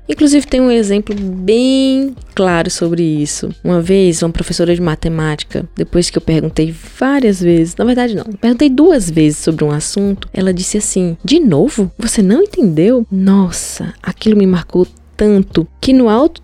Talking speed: 165 wpm